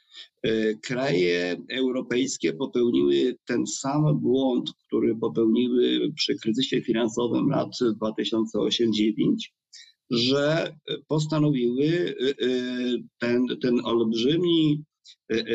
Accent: native